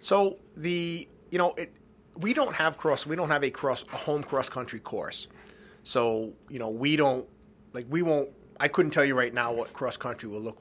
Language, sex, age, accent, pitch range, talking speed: English, male, 30-49, American, 110-135 Hz, 215 wpm